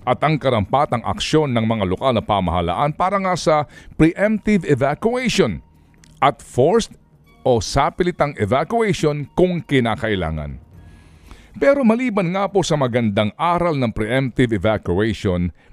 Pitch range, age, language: 110-180 Hz, 50-69, Filipino